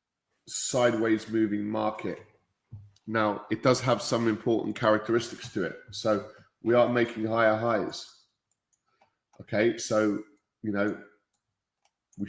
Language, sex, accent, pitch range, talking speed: English, male, British, 110-125 Hz, 110 wpm